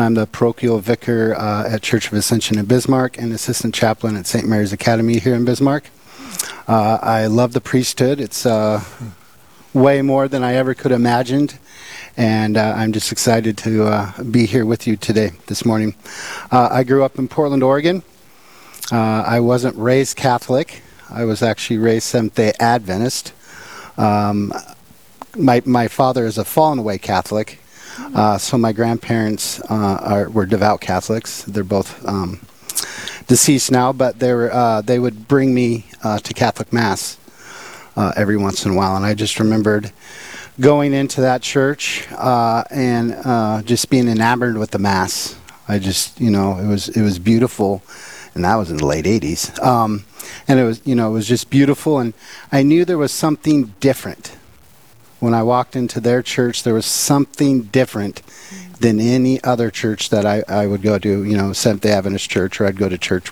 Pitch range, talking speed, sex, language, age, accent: 105-125 Hz, 180 wpm, male, English, 40-59, American